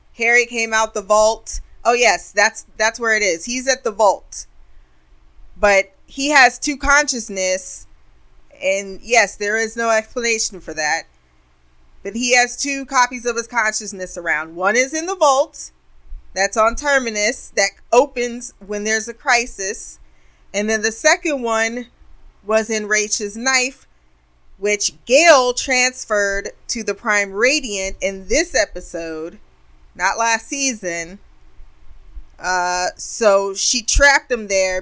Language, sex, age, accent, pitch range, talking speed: English, female, 20-39, American, 185-250 Hz, 140 wpm